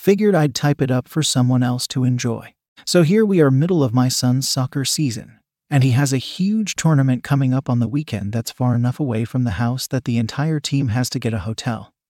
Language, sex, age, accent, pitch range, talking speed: English, male, 40-59, American, 125-150 Hz, 235 wpm